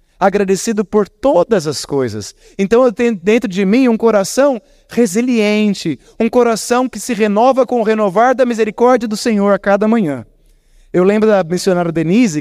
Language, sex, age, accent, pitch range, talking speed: Portuguese, male, 30-49, Brazilian, 165-215 Hz, 165 wpm